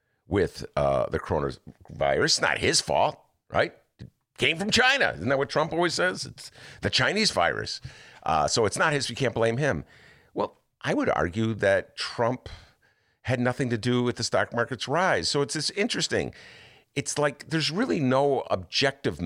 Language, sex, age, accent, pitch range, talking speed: English, male, 50-69, American, 120-180 Hz, 175 wpm